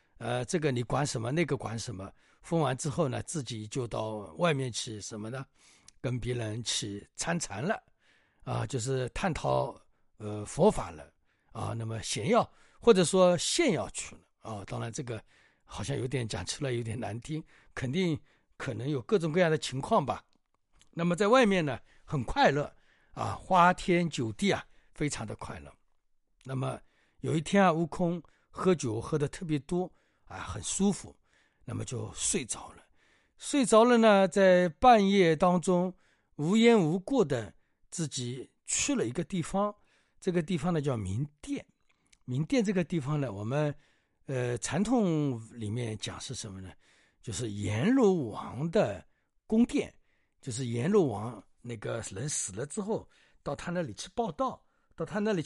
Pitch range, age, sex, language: 115-180 Hz, 60-79, male, Chinese